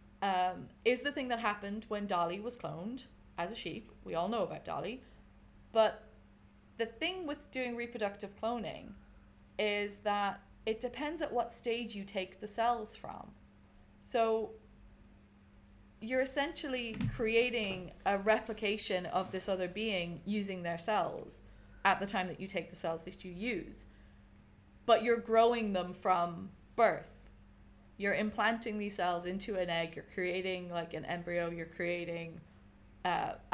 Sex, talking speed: female, 145 wpm